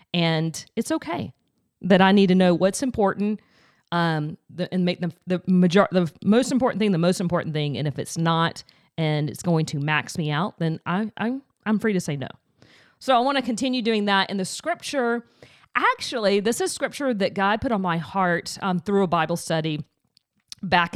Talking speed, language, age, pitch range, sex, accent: 200 wpm, English, 40-59, 170-230 Hz, female, American